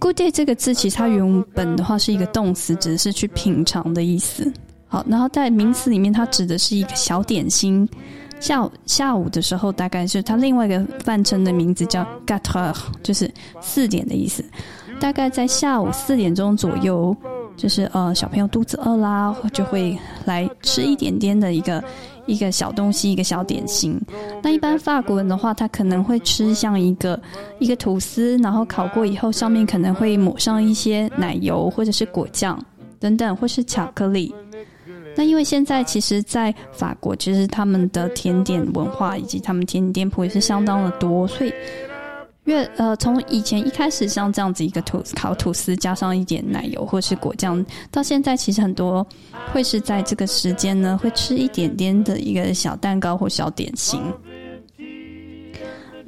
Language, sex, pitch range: Chinese, female, 185-235 Hz